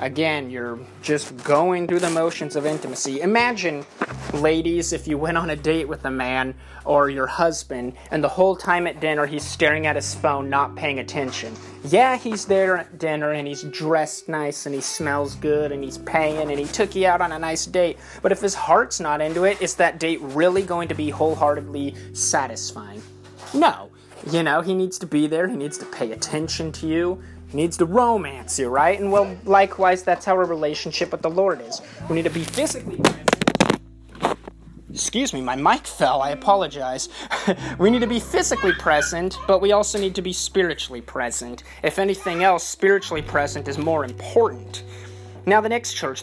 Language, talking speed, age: English, 190 wpm, 30-49